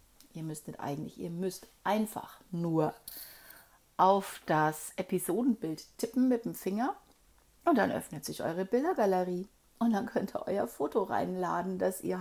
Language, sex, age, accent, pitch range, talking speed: German, female, 40-59, German, 180-240 Hz, 145 wpm